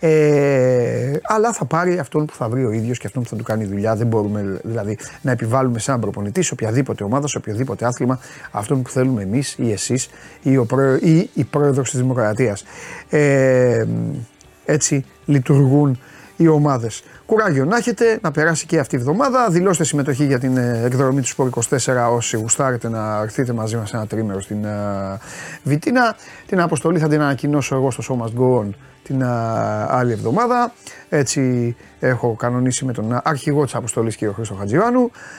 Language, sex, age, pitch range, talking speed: Greek, male, 30-49, 120-150 Hz, 170 wpm